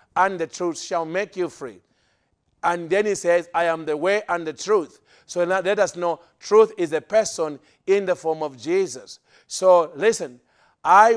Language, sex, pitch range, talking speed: English, male, 160-195 Hz, 190 wpm